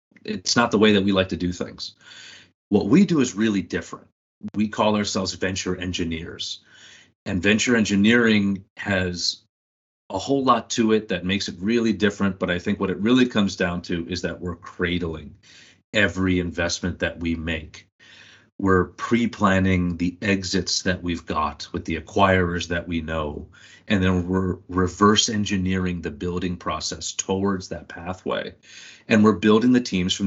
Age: 40-59